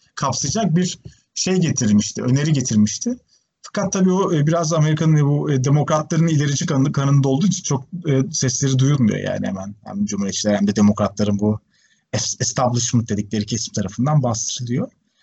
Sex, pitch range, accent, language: male, 135-185 Hz, native, Turkish